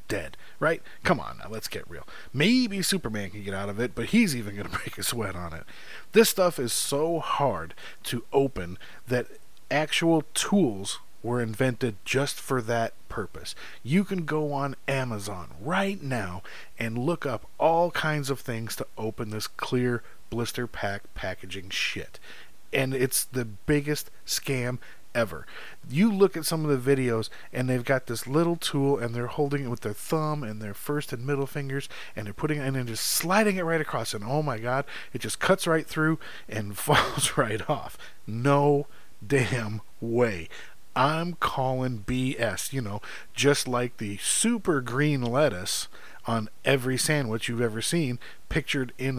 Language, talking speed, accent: English, 170 wpm, American